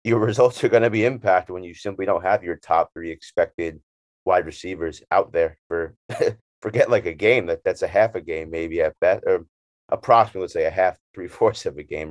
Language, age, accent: English, 30-49, American